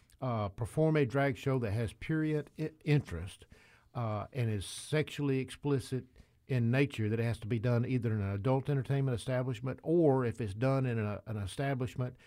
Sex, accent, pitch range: male, American, 105-130 Hz